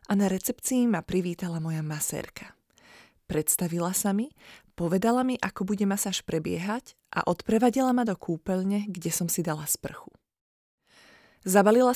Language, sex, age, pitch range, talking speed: Slovak, female, 20-39, 175-220 Hz, 135 wpm